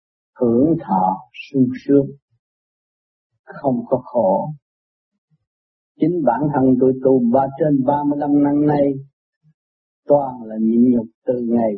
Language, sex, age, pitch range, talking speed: Vietnamese, male, 50-69, 120-155 Hz, 115 wpm